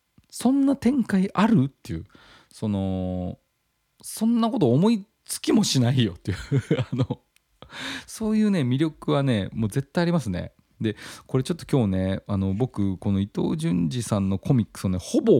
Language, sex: Japanese, male